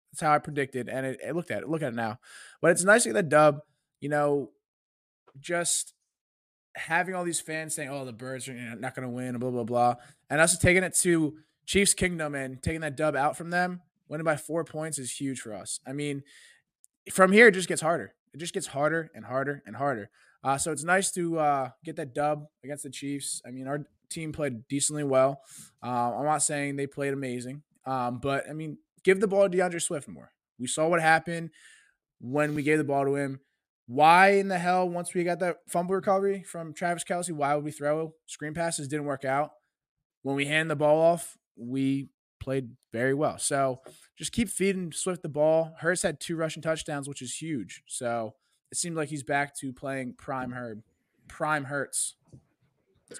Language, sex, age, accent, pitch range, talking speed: English, male, 20-39, American, 135-170 Hz, 210 wpm